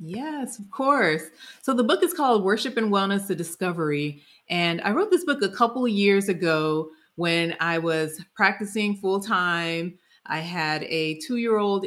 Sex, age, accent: female, 30-49, American